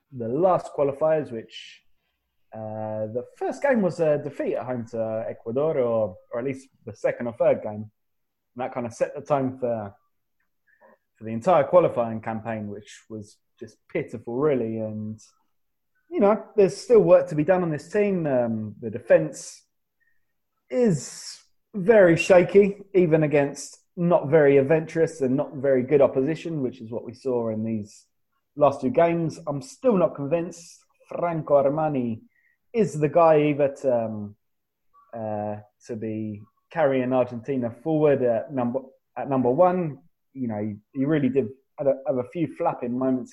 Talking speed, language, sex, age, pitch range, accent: 160 wpm, English, male, 20-39, 120-170 Hz, British